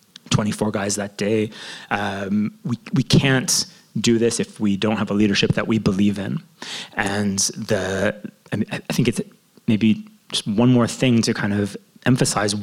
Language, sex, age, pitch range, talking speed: English, male, 30-49, 110-155 Hz, 170 wpm